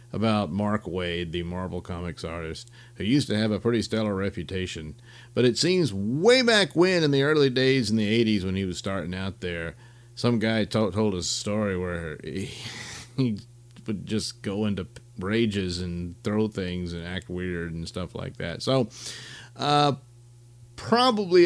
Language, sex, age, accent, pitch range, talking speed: English, male, 50-69, American, 95-120 Hz, 175 wpm